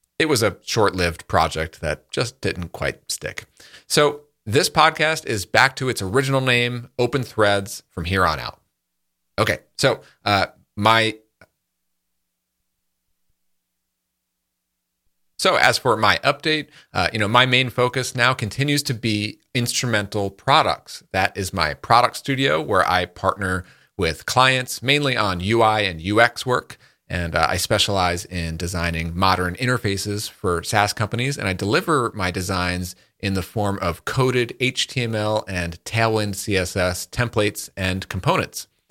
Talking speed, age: 140 wpm, 30-49